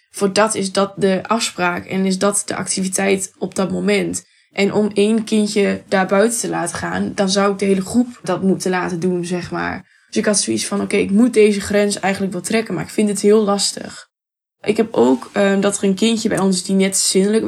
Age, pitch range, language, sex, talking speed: 10-29, 195-215 Hz, Dutch, female, 235 wpm